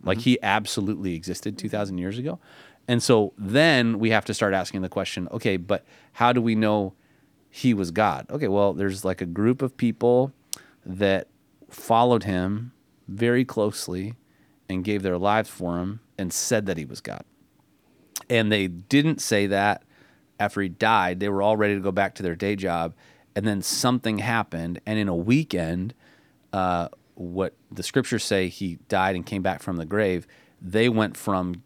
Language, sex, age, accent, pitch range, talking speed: English, male, 30-49, American, 95-125 Hz, 180 wpm